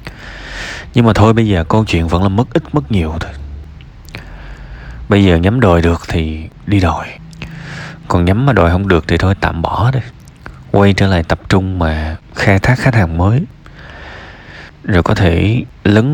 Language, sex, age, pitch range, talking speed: Vietnamese, male, 20-39, 85-110 Hz, 180 wpm